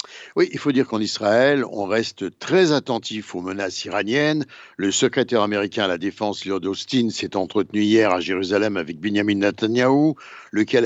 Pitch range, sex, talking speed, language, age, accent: 110-155 Hz, male, 165 wpm, Italian, 60-79, French